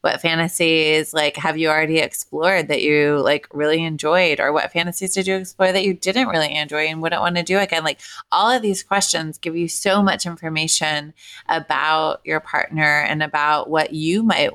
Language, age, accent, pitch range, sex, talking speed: English, 30-49, American, 155-185 Hz, female, 195 wpm